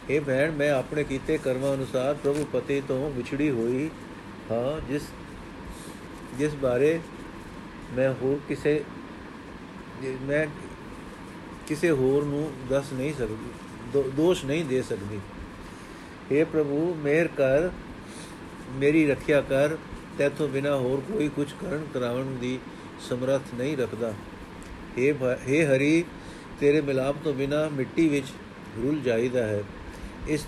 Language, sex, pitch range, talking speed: Punjabi, male, 130-160 Hz, 120 wpm